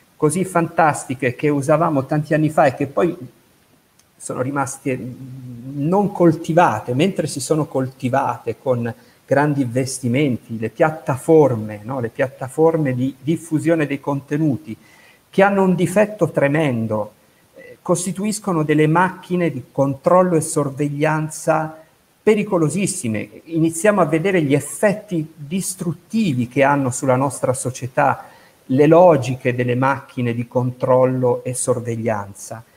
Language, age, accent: Italian, 50-69, native